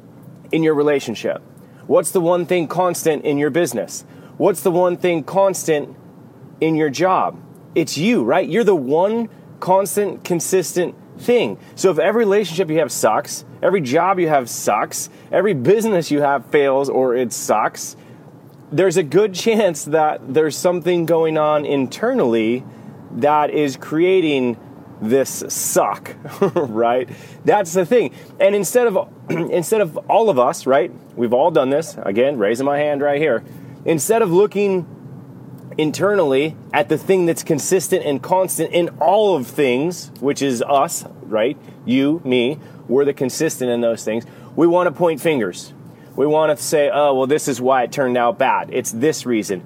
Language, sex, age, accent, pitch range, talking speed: English, male, 30-49, American, 135-175 Hz, 160 wpm